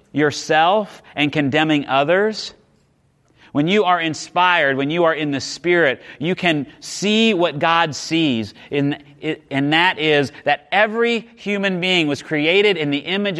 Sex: male